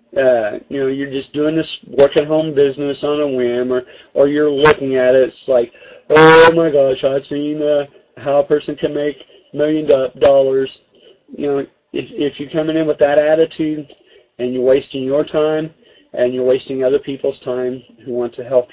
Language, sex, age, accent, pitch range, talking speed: English, male, 40-59, American, 130-160 Hz, 190 wpm